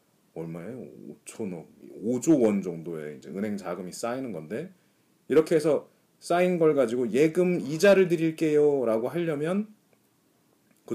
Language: Korean